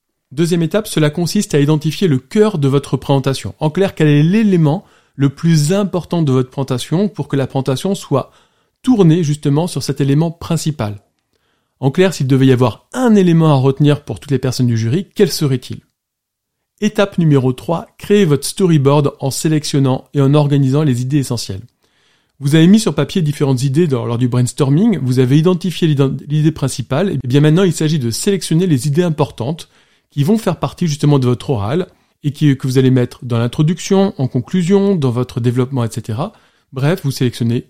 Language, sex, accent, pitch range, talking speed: French, male, French, 130-170 Hz, 180 wpm